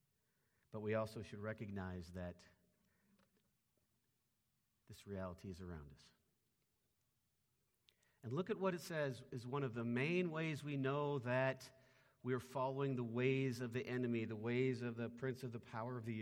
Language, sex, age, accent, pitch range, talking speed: English, male, 50-69, American, 110-165 Hz, 165 wpm